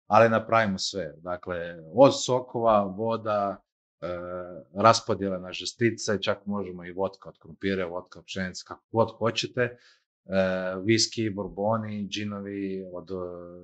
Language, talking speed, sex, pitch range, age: Croatian, 115 wpm, male, 95-115 Hz, 30-49